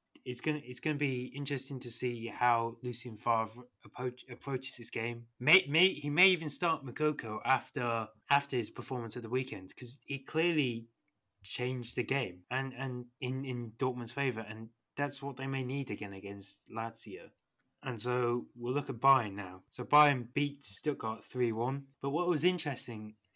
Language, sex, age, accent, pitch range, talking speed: English, male, 20-39, British, 110-135 Hz, 170 wpm